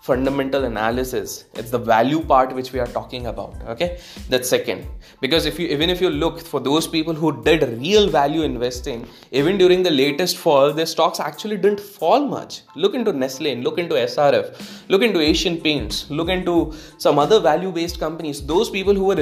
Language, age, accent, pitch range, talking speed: English, 20-39, Indian, 135-175 Hz, 185 wpm